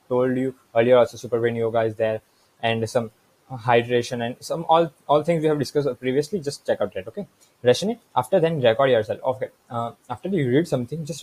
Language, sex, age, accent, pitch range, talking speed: English, male, 20-39, Indian, 120-150 Hz, 215 wpm